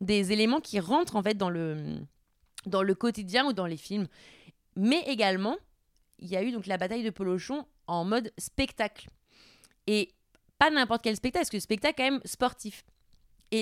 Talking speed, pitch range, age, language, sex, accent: 190 wpm, 195-250 Hz, 20-39, French, female, French